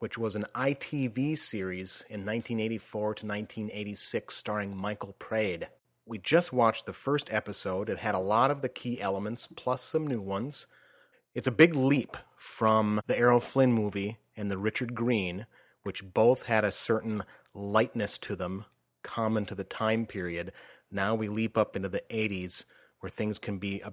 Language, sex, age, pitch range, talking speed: English, male, 30-49, 100-125 Hz, 170 wpm